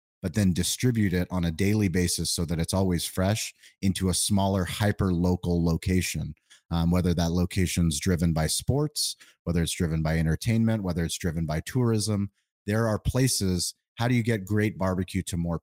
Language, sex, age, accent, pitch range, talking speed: English, male, 30-49, American, 85-100 Hz, 175 wpm